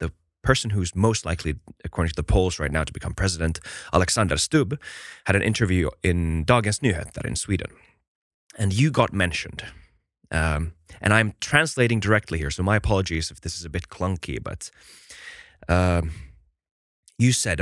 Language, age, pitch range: Finnish, 20-39, 85-110 Hz